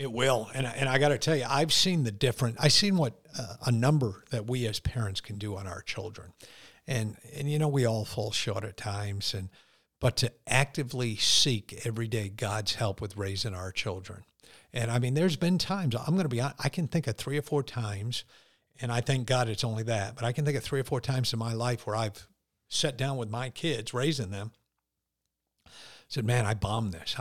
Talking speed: 225 wpm